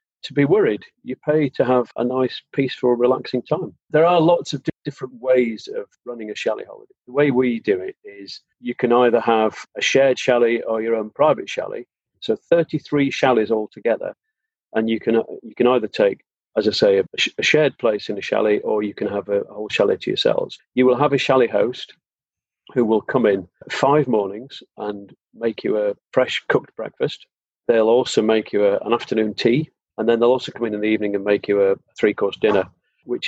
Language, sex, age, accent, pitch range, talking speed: English, male, 40-59, British, 110-155 Hz, 210 wpm